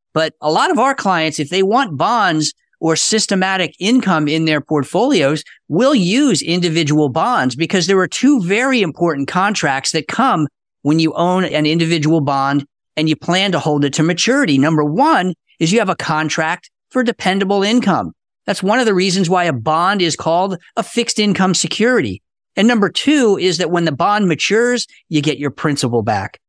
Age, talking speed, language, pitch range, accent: 50-69, 185 wpm, English, 155-215 Hz, American